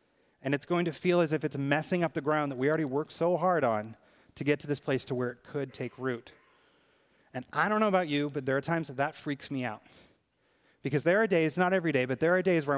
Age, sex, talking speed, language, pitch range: 30-49, male, 270 wpm, English, 125-160 Hz